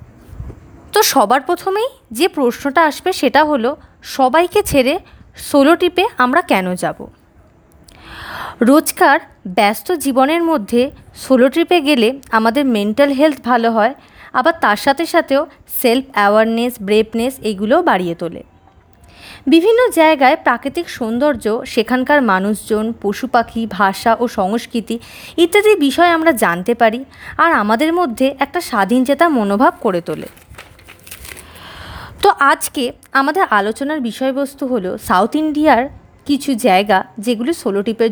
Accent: native